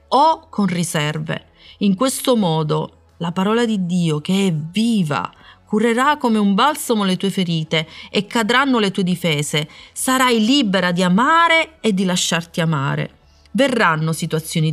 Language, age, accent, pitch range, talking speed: Italian, 30-49, native, 160-235 Hz, 145 wpm